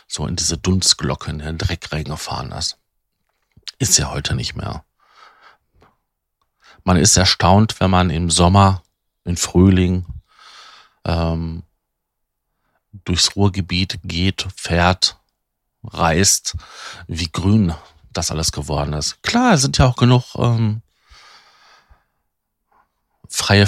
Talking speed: 110 wpm